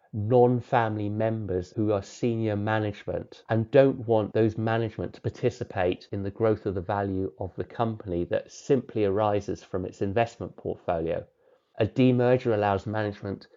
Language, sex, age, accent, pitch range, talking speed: English, male, 30-49, British, 100-125 Hz, 145 wpm